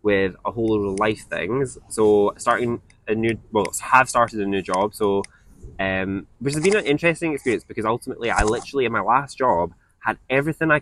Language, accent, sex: English, British, male